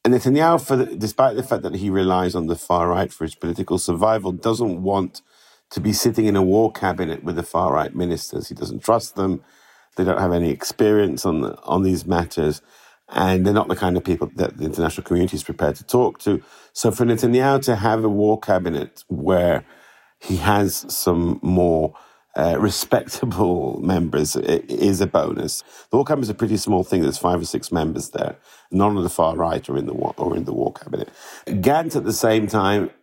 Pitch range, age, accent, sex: 90-110 Hz, 50-69, British, male